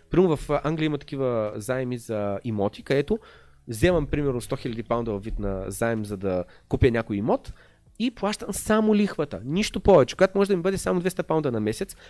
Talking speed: 190 wpm